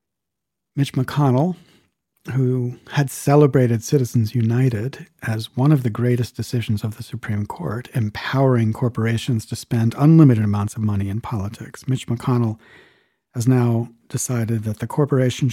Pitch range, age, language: 120-170 Hz, 50-69, English